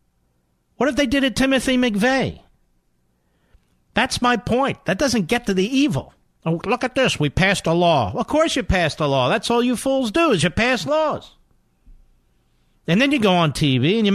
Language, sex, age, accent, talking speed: English, male, 50-69, American, 195 wpm